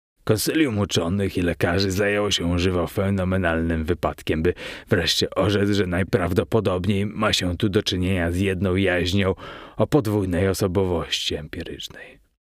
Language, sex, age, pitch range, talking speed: Polish, male, 30-49, 85-105 Hz, 125 wpm